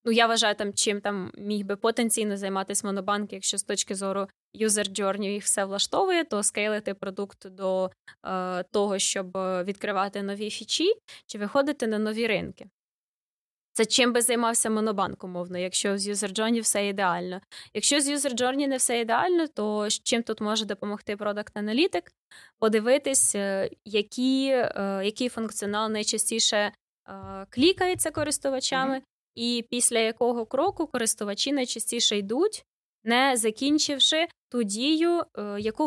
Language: Ukrainian